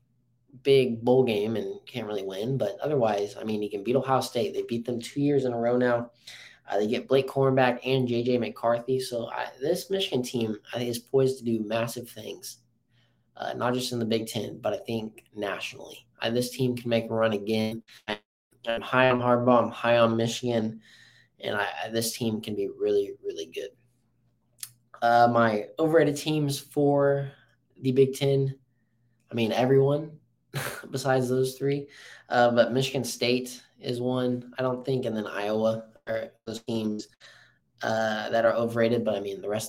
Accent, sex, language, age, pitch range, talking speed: American, male, English, 20-39, 115-135 Hz, 180 wpm